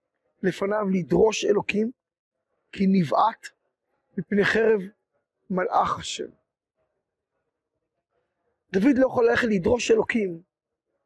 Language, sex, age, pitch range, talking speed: Hebrew, male, 50-69, 195-250 Hz, 80 wpm